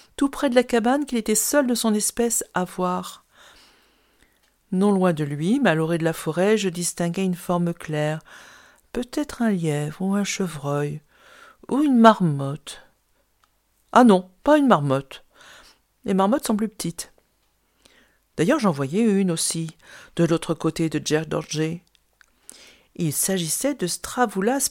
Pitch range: 160-220 Hz